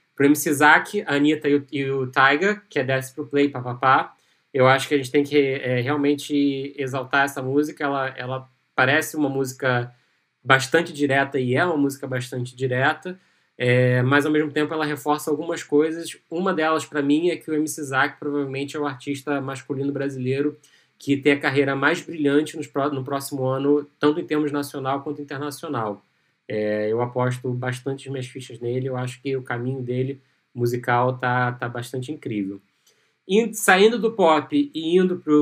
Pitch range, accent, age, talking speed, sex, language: 130-155 Hz, Brazilian, 20-39, 180 wpm, male, Portuguese